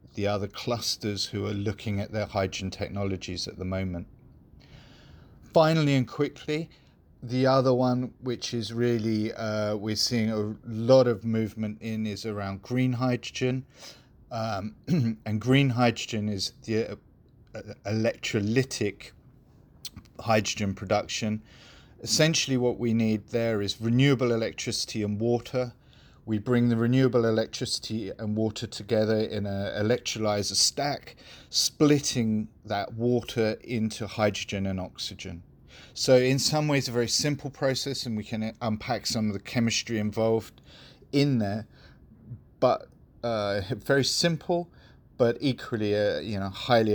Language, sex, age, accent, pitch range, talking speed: English, male, 40-59, British, 100-120 Hz, 125 wpm